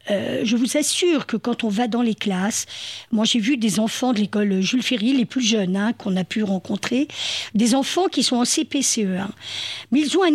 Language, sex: French, female